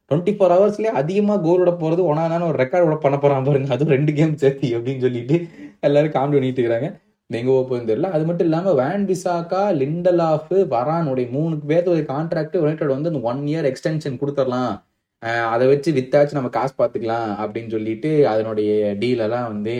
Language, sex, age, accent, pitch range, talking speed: Tamil, male, 20-39, native, 115-170 Hz, 80 wpm